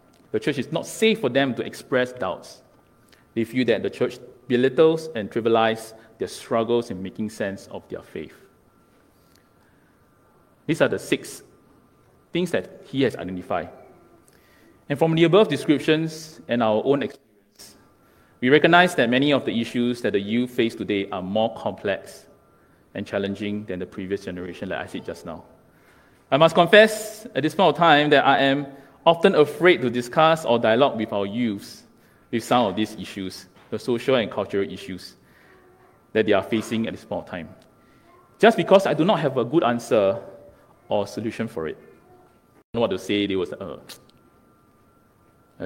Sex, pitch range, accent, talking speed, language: male, 100-145 Hz, Malaysian, 175 wpm, English